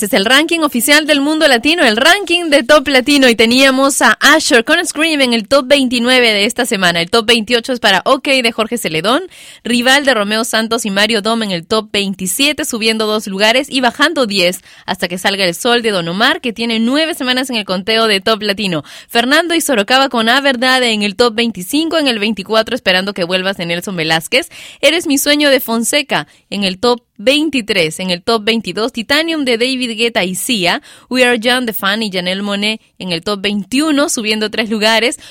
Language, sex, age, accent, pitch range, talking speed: Spanish, female, 20-39, Mexican, 210-265 Hz, 205 wpm